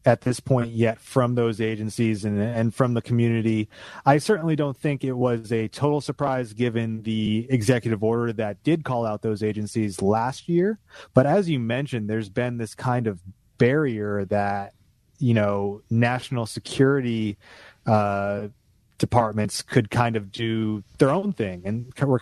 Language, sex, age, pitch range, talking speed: English, male, 30-49, 105-125 Hz, 160 wpm